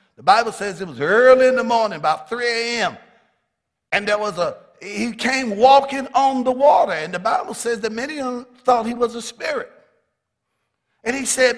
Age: 50-69